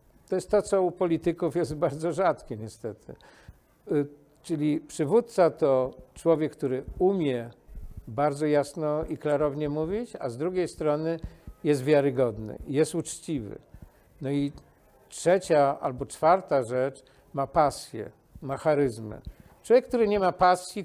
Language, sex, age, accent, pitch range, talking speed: Polish, male, 50-69, native, 135-170 Hz, 125 wpm